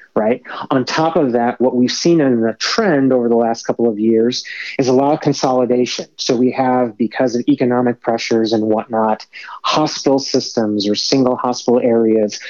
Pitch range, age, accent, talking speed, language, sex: 115-140 Hz, 30-49, American, 180 wpm, English, male